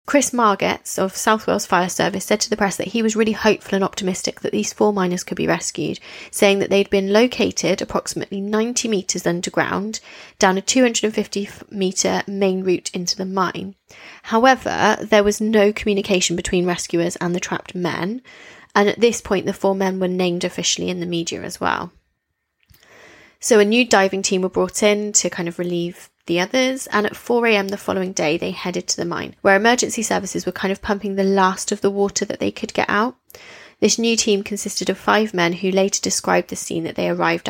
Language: English